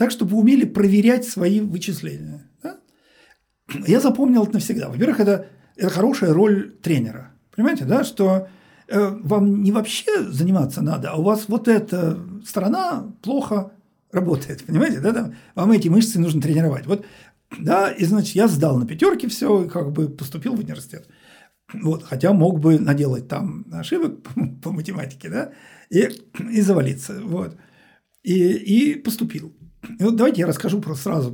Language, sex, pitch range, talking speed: Russian, male, 145-210 Hz, 155 wpm